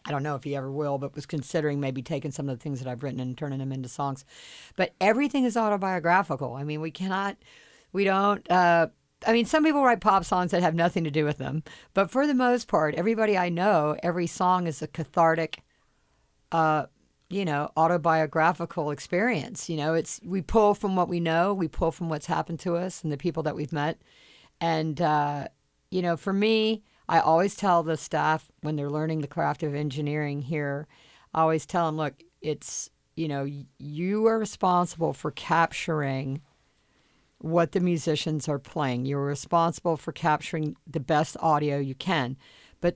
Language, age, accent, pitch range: English, 50-69, American, 150-180 Hz